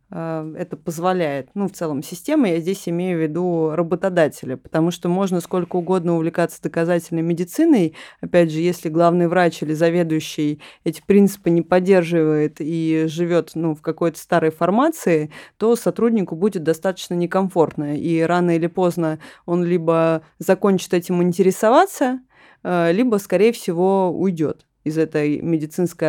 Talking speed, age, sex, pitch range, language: 135 wpm, 20-39, female, 160-190 Hz, Russian